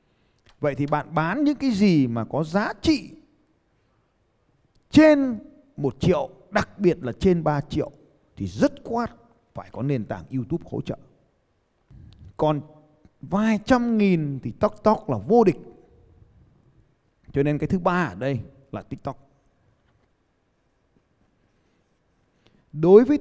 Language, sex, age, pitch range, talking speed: Vietnamese, male, 20-39, 135-210 Hz, 130 wpm